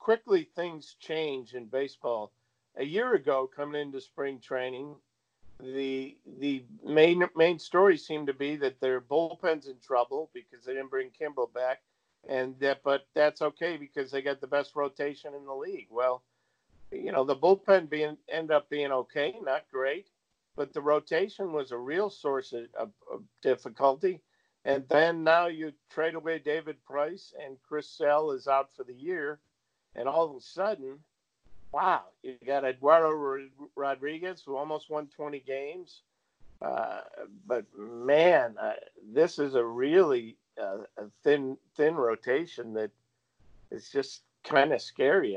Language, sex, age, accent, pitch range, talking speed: English, male, 50-69, American, 130-155 Hz, 155 wpm